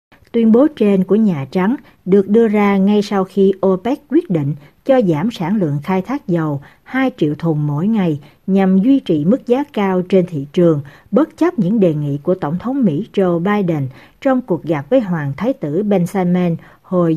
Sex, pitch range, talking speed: female, 160-210 Hz, 195 wpm